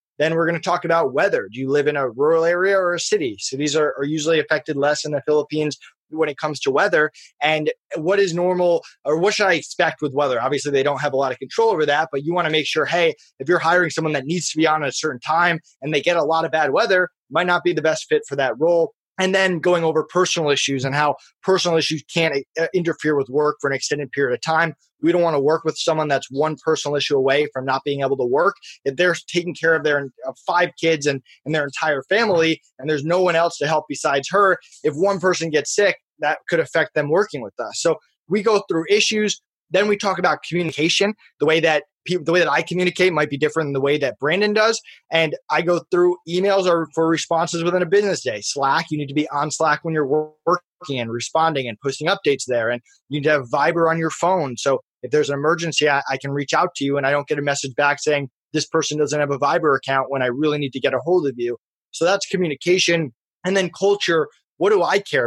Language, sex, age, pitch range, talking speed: English, male, 20-39, 145-180 Hz, 250 wpm